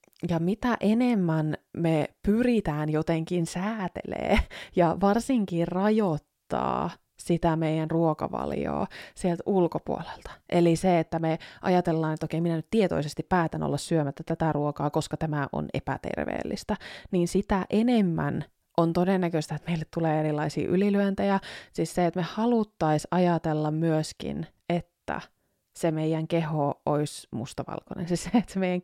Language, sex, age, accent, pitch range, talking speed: Finnish, female, 20-39, native, 155-195 Hz, 130 wpm